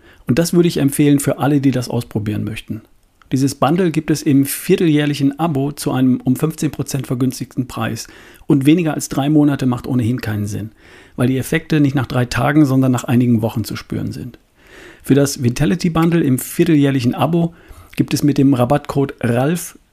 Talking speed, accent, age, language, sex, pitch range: 180 wpm, German, 40-59, German, male, 120-145 Hz